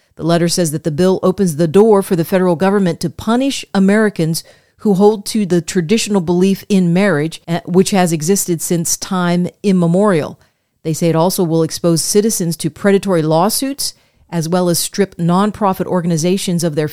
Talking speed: 170 wpm